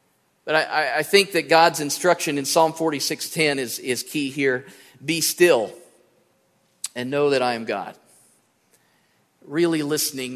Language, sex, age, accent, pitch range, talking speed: English, male, 40-59, American, 130-165 Hz, 140 wpm